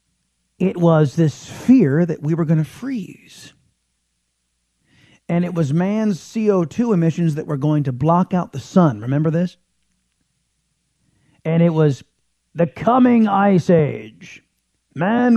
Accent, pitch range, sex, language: American, 145-195 Hz, male, English